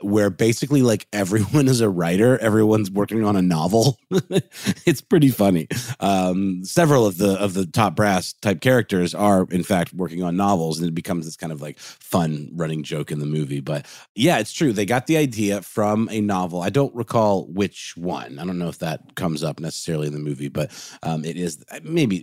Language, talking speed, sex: English, 200 wpm, male